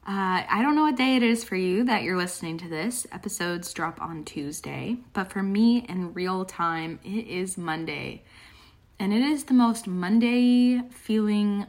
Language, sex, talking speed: English, female, 180 wpm